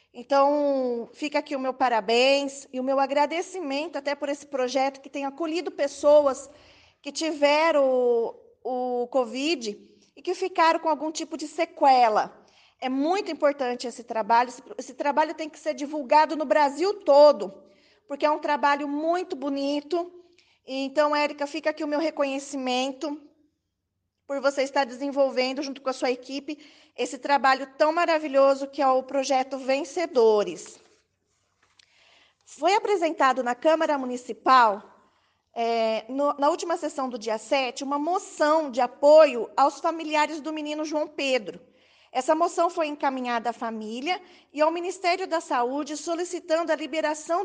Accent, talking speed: Brazilian, 145 wpm